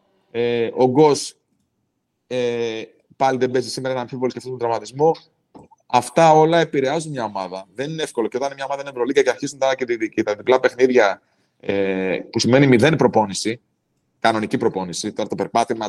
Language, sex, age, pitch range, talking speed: Greek, male, 30-49, 120-150 Hz, 180 wpm